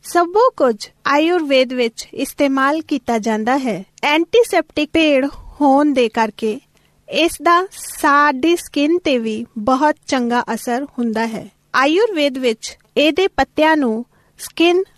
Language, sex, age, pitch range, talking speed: Punjabi, female, 40-59, 245-320 Hz, 115 wpm